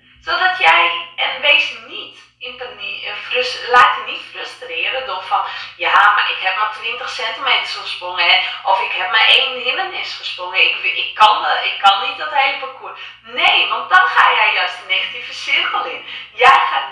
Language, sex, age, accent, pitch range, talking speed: English, female, 20-39, Dutch, 200-270 Hz, 180 wpm